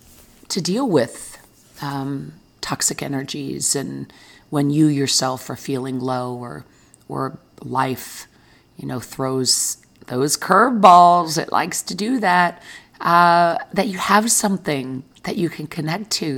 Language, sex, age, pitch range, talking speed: English, female, 40-59, 130-165 Hz, 130 wpm